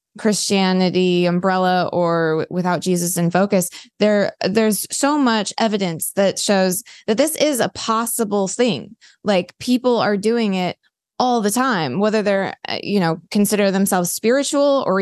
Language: English